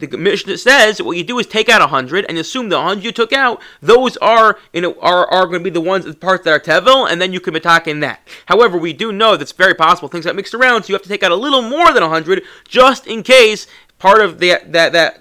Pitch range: 160-215 Hz